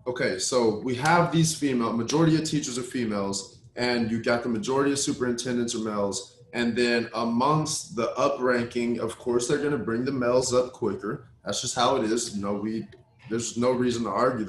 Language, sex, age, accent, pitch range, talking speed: English, male, 20-39, American, 115-155 Hz, 195 wpm